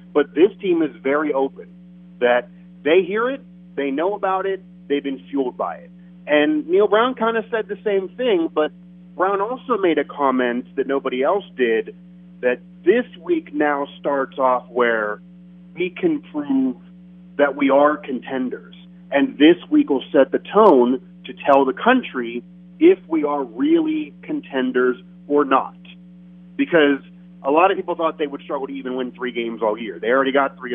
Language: English